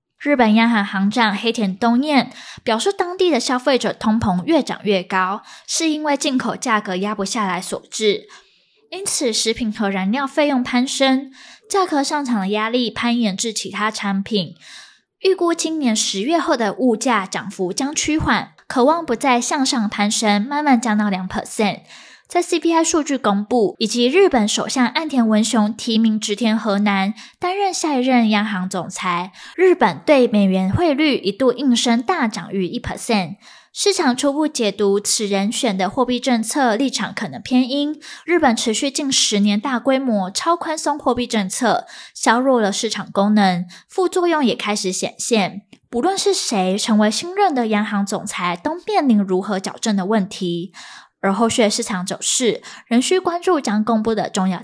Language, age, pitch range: Chinese, 10-29, 205-280 Hz